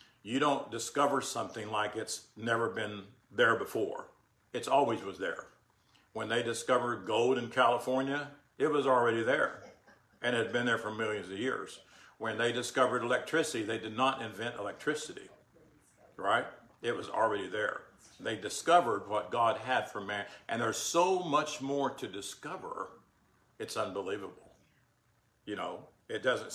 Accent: American